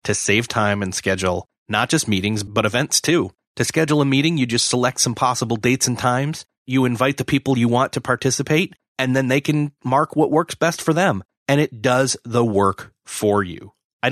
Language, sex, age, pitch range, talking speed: English, male, 30-49, 105-140 Hz, 210 wpm